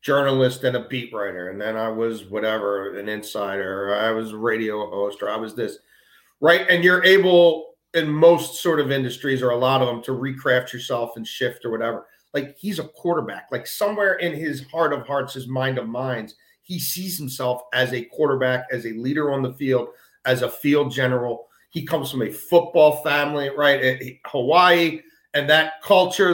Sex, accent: male, American